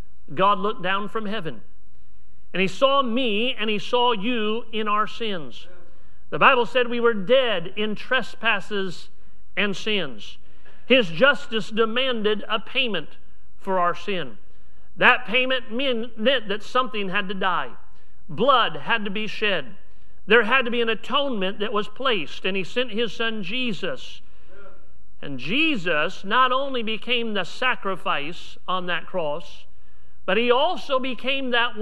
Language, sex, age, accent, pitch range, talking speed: English, male, 50-69, American, 195-250 Hz, 145 wpm